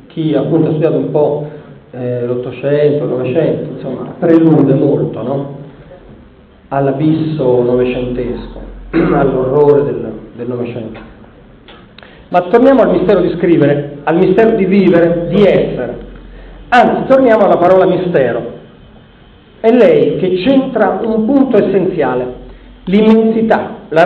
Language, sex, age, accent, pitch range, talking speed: Italian, male, 40-59, native, 145-225 Hz, 110 wpm